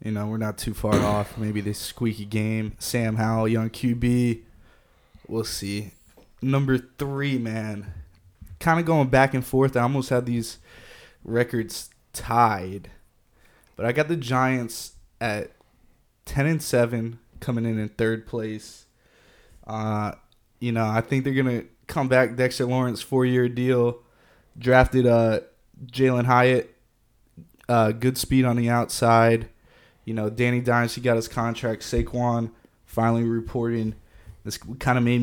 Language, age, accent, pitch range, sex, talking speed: English, 20-39, American, 110-125 Hz, male, 145 wpm